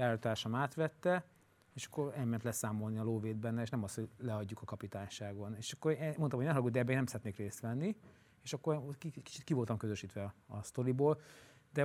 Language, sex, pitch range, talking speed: Hungarian, male, 115-140 Hz, 190 wpm